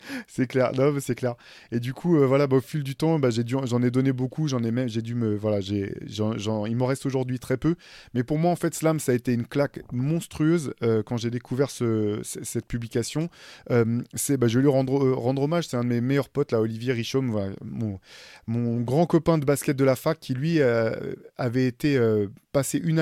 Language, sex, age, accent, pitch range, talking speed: French, male, 20-39, French, 120-145 Hz, 250 wpm